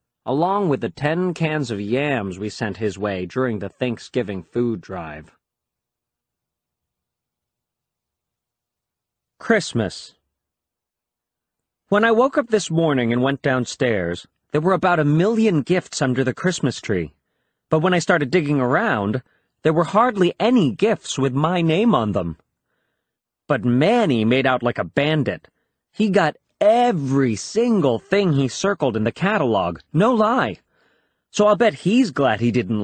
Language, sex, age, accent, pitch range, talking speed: Italian, male, 40-59, American, 120-185 Hz, 145 wpm